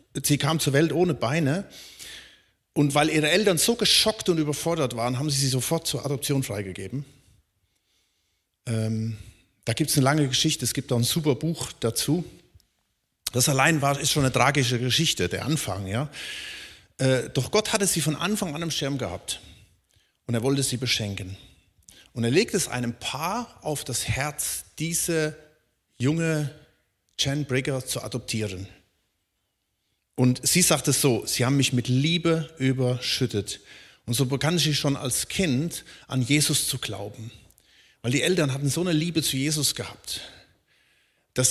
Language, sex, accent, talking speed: German, male, German, 160 wpm